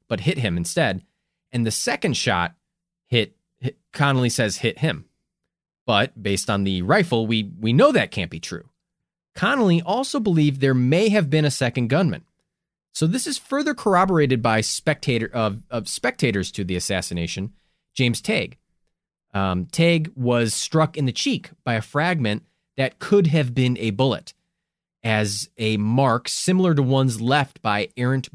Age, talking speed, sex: 30-49, 160 wpm, male